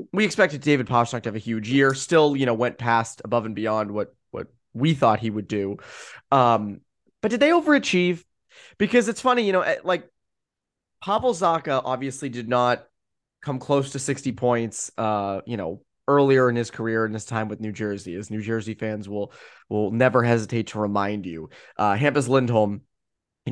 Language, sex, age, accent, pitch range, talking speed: English, male, 20-39, American, 110-170 Hz, 185 wpm